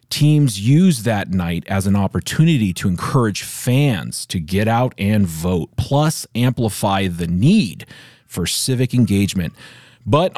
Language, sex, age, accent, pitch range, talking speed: English, male, 40-59, American, 105-150 Hz, 135 wpm